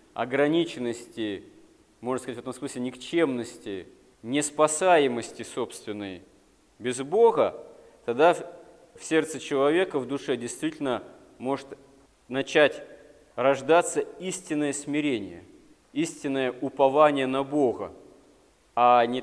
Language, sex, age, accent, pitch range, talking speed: Russian, male, 40-59, native, 125-170 Hz, 90 wpm